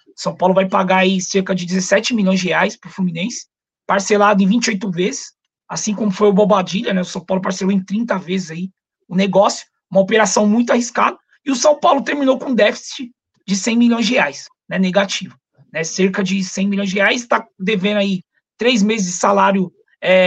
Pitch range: 190-235 Hz